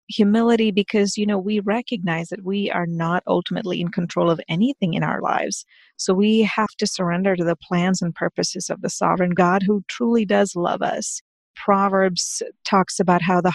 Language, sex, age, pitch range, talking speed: English, female, 40-59, 175-205 Hz, 185 wpm